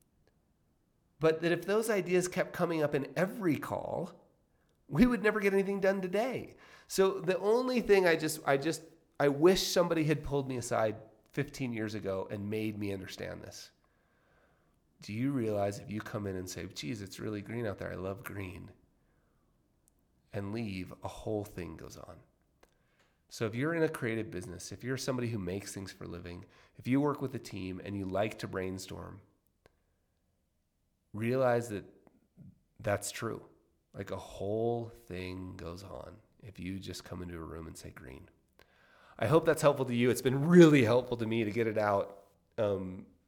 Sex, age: male, 30-49